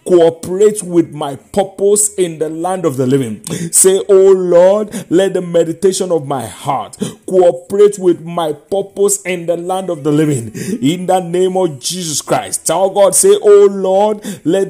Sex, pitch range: male, 140-195 Hz